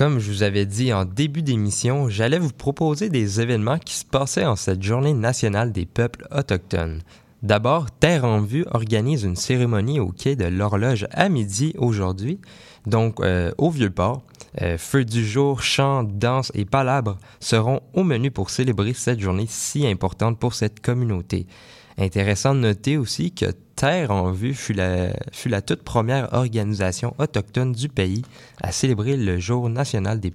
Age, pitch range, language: 20-39, 105-140 Hz, French